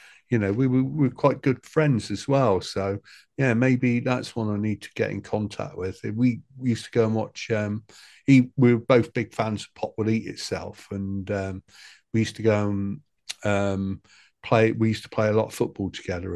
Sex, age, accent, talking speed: male, 50-69, British, 220 wpm